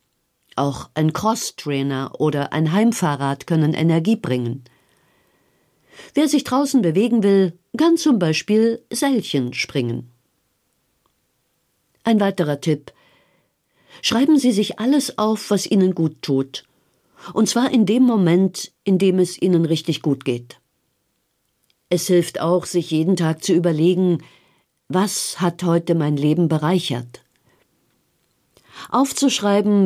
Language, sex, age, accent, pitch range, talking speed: German, female, 50-69, German, 150-195 Hz, 115 wpm